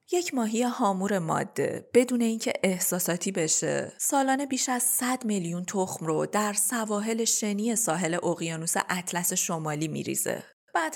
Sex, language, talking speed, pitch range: female, Persian, 130 wpm, 175-240 Hz